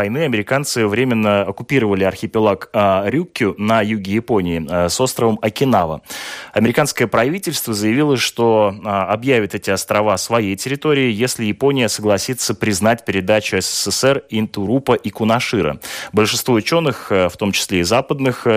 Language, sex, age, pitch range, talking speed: Russian, male, 20-39, 100-125 Hz, 125 wpm